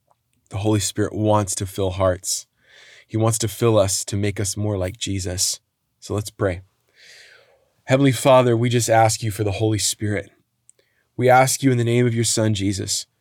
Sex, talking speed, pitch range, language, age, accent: male, 185 wpm, 105-130 Hz, English, 20-39, American